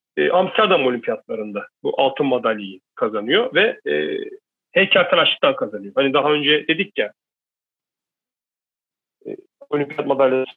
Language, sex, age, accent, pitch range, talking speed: Turkish, male, 40-59, native, 165-255 Hz, 110 wpm